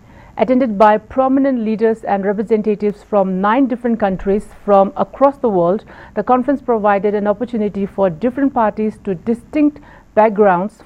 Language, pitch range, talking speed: English, 200-245 Hz, 140 wpm